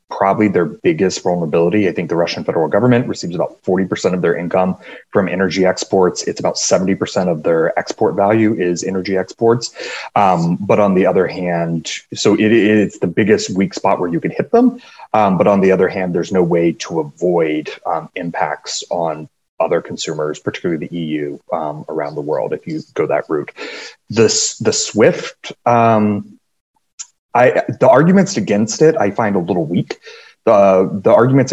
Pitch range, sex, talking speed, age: 85-120 Hz, male, 170 wpm, 30-49